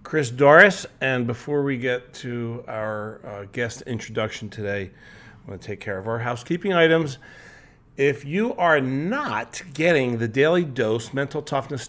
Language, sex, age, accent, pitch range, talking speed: English, male, 40-59, American, 105-135 Hz, 155 wpm